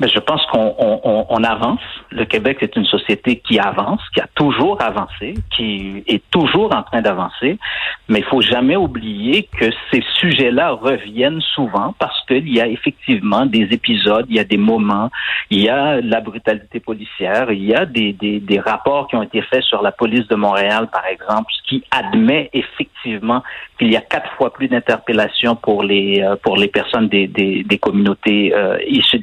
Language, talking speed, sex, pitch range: French, 185 wpm, male, 105-150 Hz